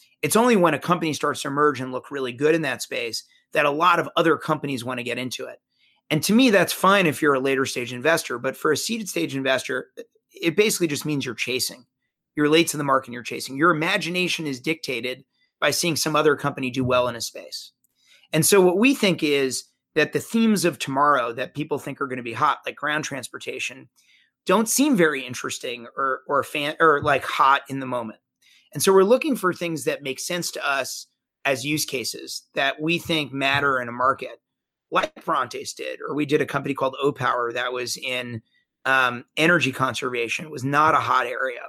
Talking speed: 215 wpm